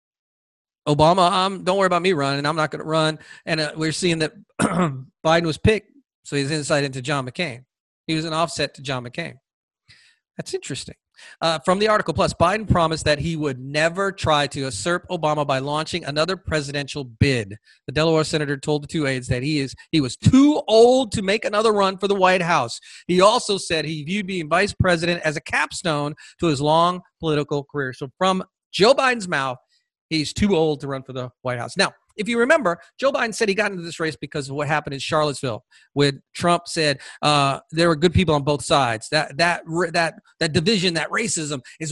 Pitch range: 145-185 Hz